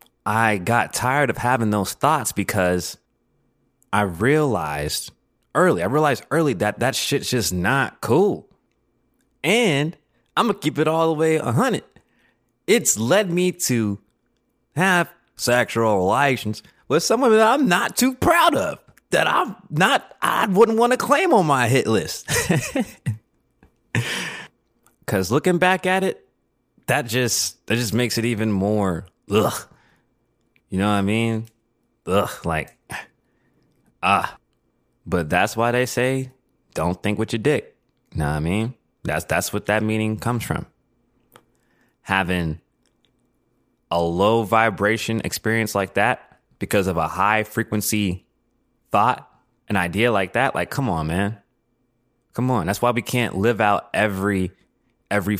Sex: male